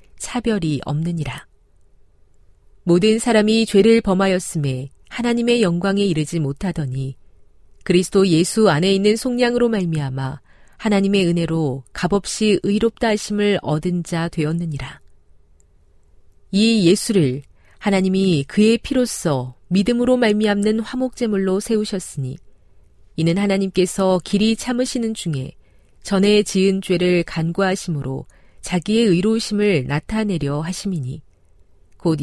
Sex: female